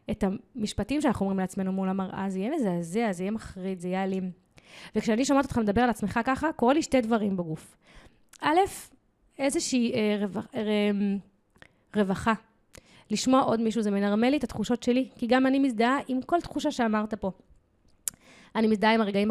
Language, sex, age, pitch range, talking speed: Hebrew, female, 20-39, 200-240 Hz, 175 wpm